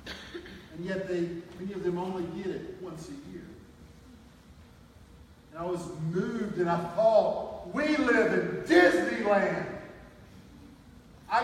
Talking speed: 125 wpm